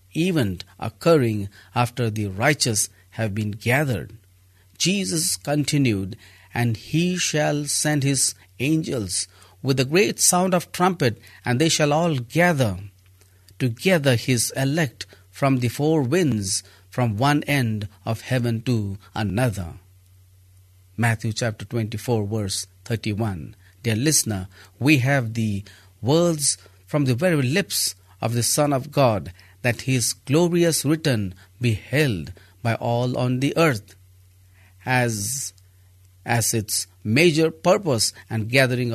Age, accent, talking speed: 50-69, Indian, 120 wpm